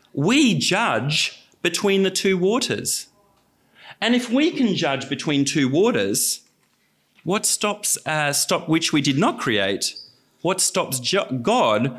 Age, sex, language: 40-59, male, English